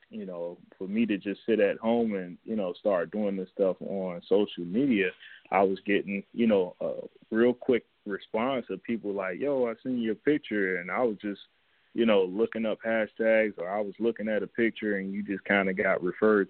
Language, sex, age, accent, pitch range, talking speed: English, male, 20-39, American, 95-110 Hz, 215 wpm